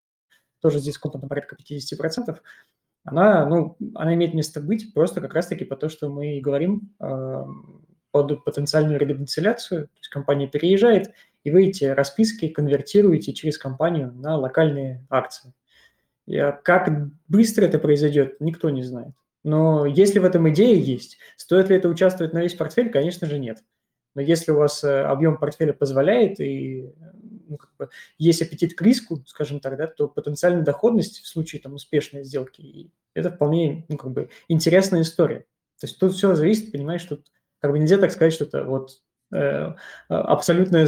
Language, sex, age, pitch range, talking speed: Russian, male, 20-39, 140-175 Hz, 145 wpm